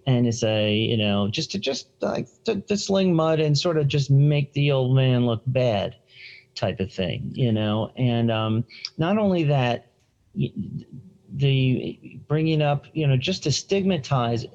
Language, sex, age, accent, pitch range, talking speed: English, male, 40-59, American, 115-145 Hz, 170 wpm